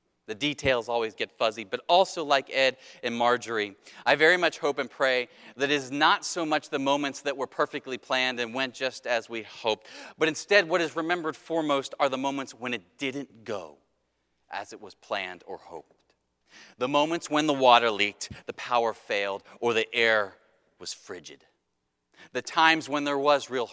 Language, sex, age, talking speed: English, male, 30-49, 185 wpm